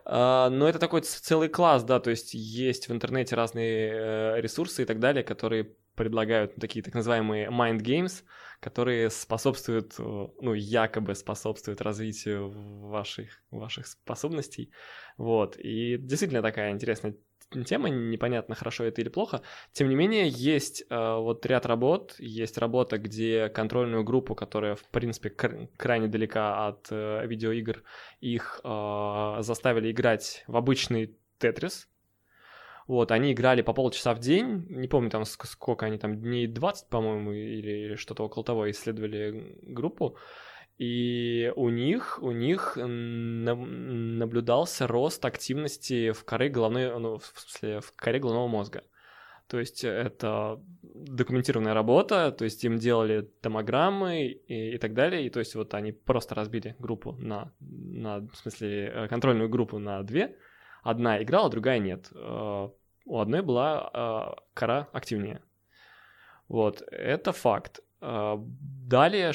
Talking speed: 135 wpm